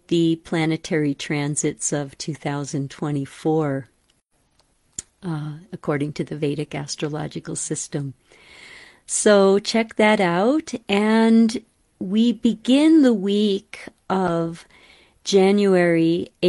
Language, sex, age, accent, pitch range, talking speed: English, female, 50-69, American, 155-195 Hz, 85 wpm